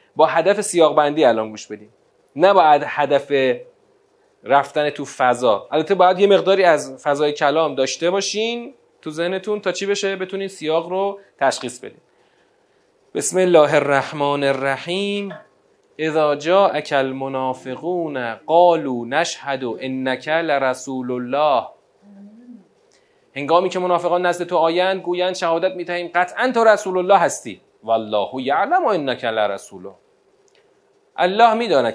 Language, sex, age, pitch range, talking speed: Persian, male, 30-49, 135-200 Hz, 130 wpm